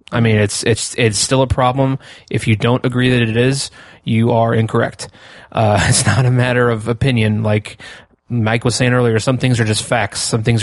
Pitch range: 110-125 Hz